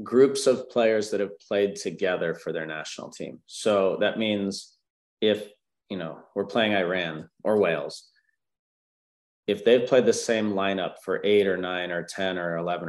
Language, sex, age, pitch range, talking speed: English, male, 30-49, 90-105 Hz, 170 wpm